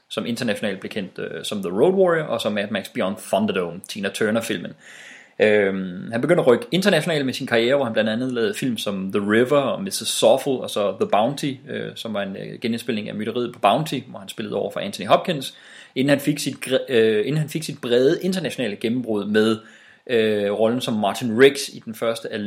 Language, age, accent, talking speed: English, 30-49, Danish, 210 wpm